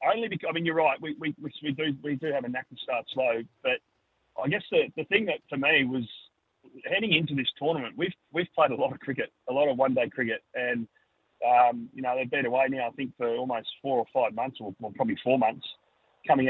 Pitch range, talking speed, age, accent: 125-150 Hz, 245 wpm, 30-49, Australian